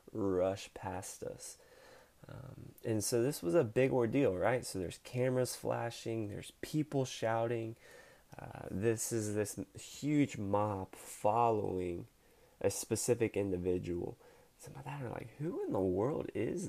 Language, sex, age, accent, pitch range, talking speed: English, male, 20-39, American, 95-130 Hz, 140 wpm